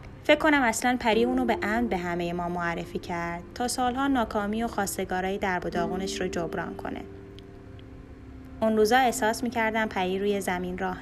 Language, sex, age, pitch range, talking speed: Persian, female, 10-29, 185-235 Hz, 165 wpm